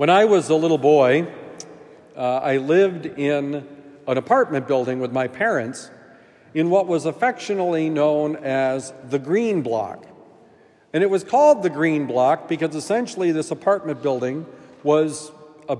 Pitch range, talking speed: 145-175 Hz, 150 wpm